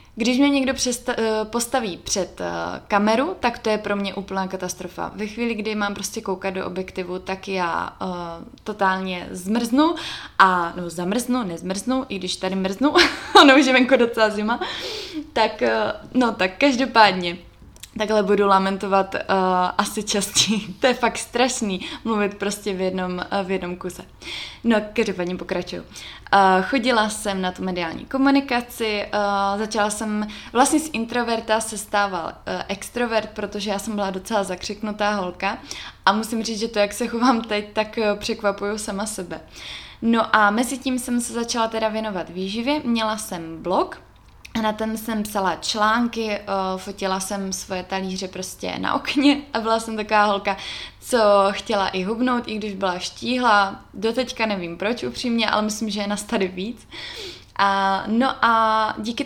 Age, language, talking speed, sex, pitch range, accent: 20-39, Czech, 160 wpm, female, 195-235 Hz, native